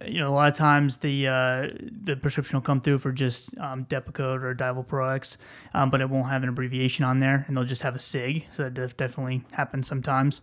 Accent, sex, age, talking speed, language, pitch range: American, male, 20-39, 235 wpm, English, 130-145 Hz